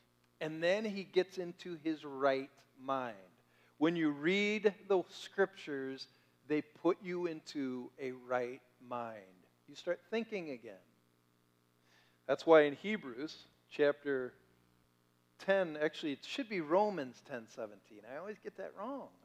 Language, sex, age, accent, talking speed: English, male, 50-69, American, 130 wpm